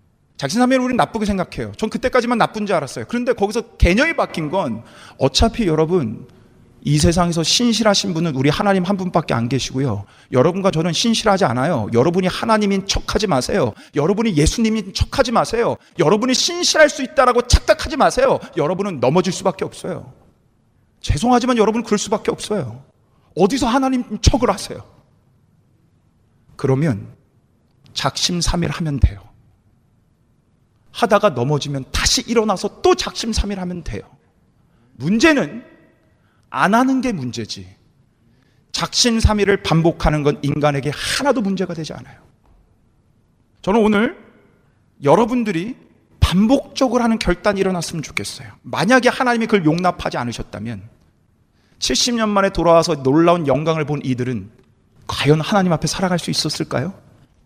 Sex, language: male, Korean